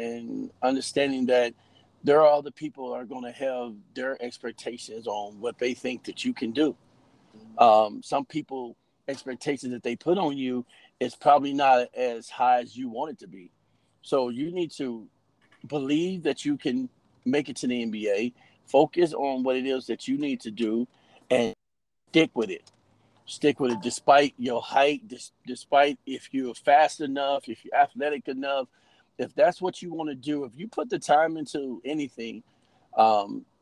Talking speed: 180 wpm